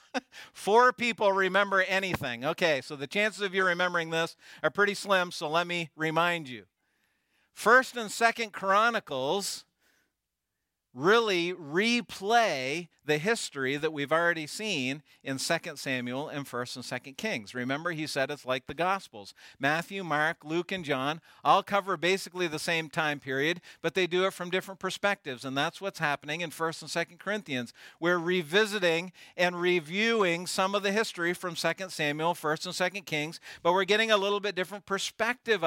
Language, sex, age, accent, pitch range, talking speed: English, male, 50-69, American, 150-210 Hz, 165 wpm